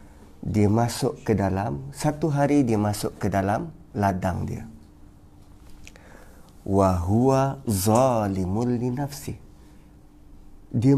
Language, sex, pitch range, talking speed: Malay, male, 100-155 Hz, 85 wpm